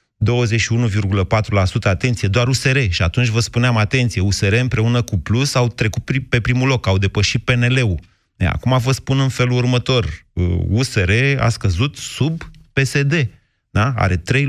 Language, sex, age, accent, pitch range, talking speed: Romanian, male, 30-49, native, 100-125 Hz, 135 wpm